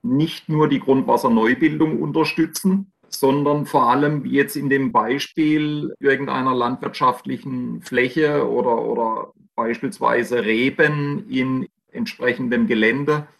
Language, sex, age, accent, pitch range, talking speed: German, male, 40-59, German, 125-155 Hz, 100 wpm